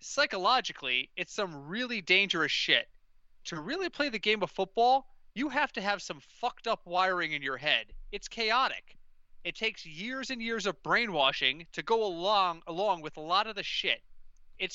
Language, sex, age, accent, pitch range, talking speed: English, male, 30-49, American, 180-245 Hz, 180 wpm